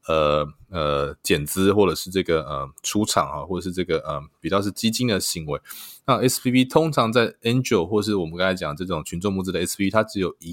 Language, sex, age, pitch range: Chinese, male, 20-39, 85-110 Hz